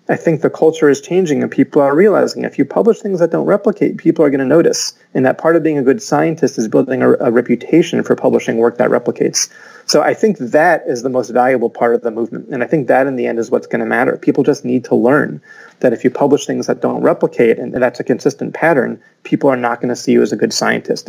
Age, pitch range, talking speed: 30-49, 120-150 Hz, 265 wpm